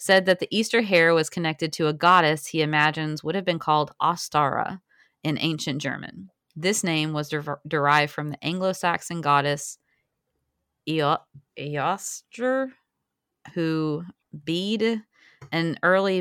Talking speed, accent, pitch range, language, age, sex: 120 wpm, American, 155-190 Hz, English, 30-49, female